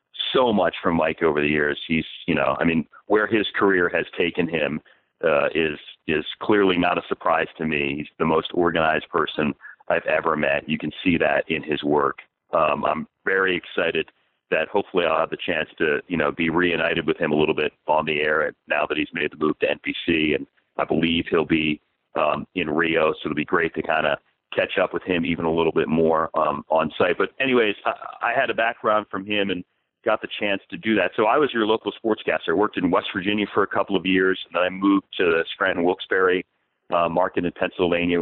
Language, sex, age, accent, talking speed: English, male, 40-59, American, 225 wpm